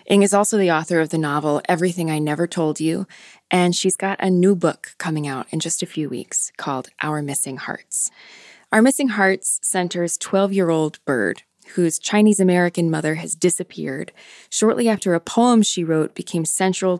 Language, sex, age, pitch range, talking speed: English, female, 20-39, 150-180 Hz, 175 wpm